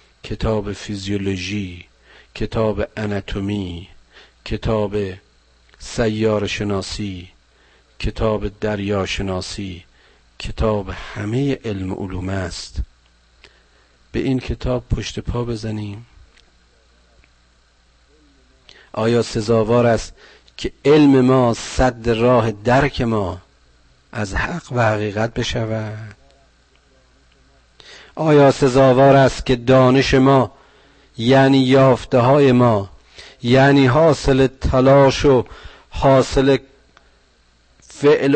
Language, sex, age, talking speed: Persian, male, 50-69, 80 wpm